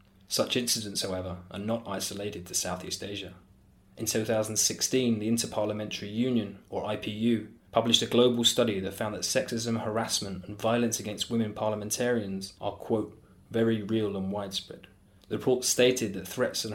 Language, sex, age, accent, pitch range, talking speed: English, male, 20-39, British, 95-115 Hz, 150 wpm